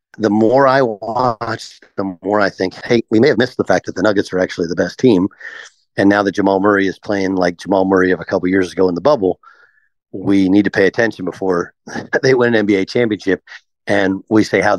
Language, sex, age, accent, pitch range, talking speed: English, male, 50-69, American, 100-125 Hz, 225 wpm